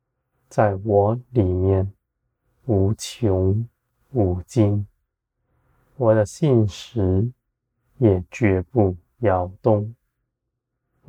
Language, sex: Chinese, male